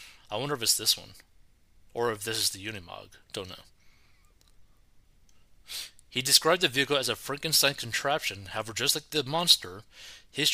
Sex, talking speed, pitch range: male, 160 wpm, 105-140 Hz